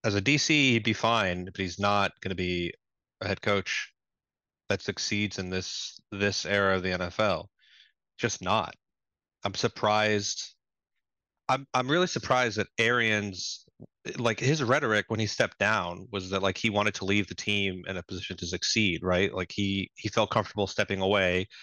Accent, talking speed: American, 175 wpm